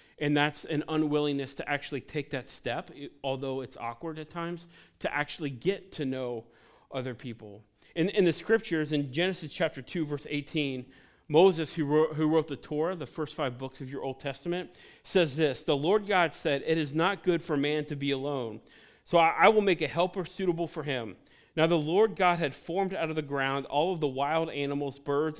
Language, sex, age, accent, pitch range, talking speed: English, male, 40-59, American, 140-170 Hz, 205 wpm